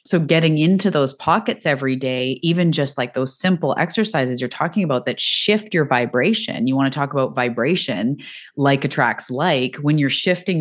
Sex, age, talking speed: female, 20-39, 180 wpm